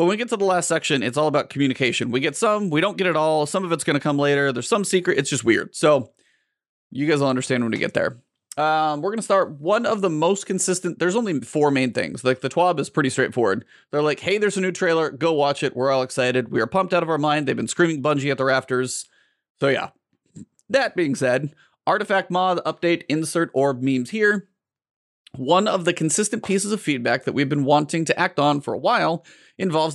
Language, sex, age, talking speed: English, male, 30-49, 240 wpm